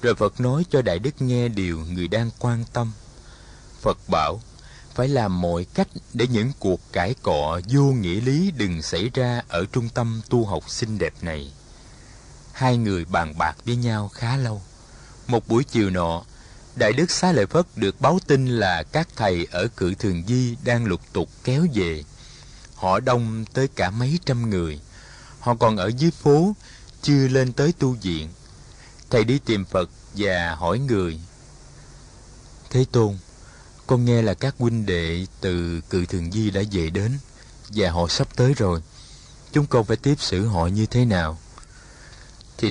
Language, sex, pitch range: Vietnamese, male, 95-130 Hz